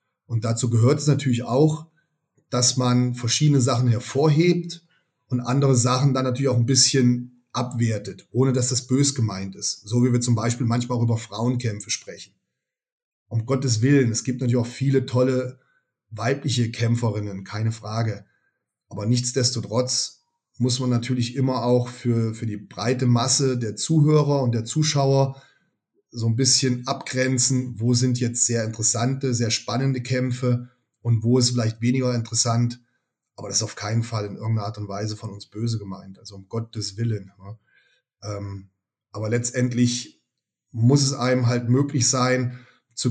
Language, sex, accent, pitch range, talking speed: German, male, German, 115-130 Hz, 155 wpm